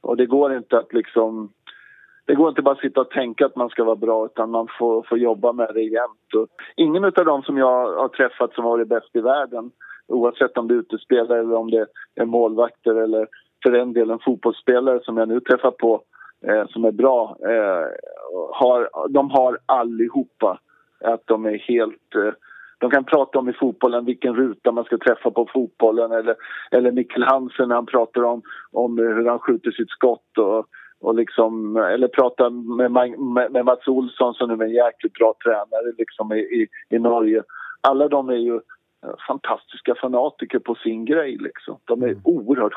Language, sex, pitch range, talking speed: English, male, 115-135 Hz, 180 wpm